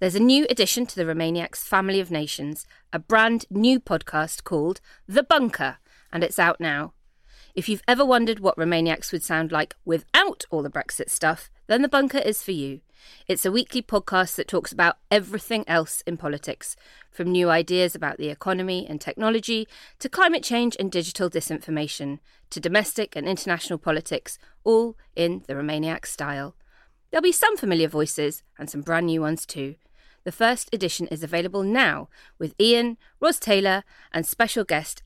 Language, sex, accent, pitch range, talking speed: English, female, British, 160-230 Hz, 170 wpm